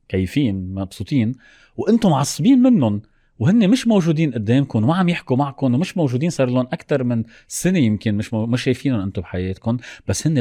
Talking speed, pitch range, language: 160 wpm, 105-150 Hz, Arabic